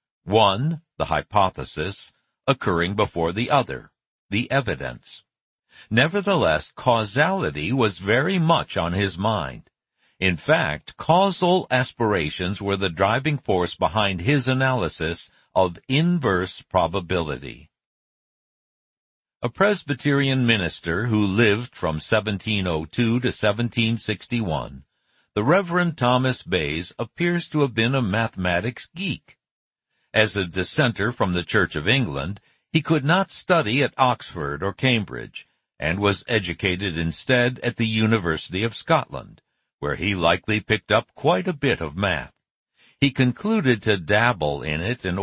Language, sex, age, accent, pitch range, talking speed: English, male, 60-79, American, 95-130 Hz, 125 wpm